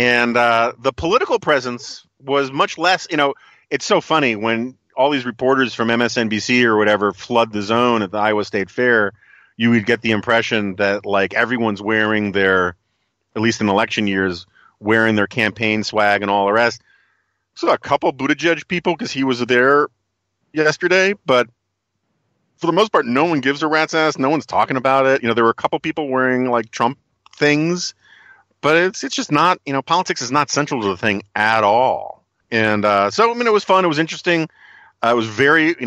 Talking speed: 205 wpm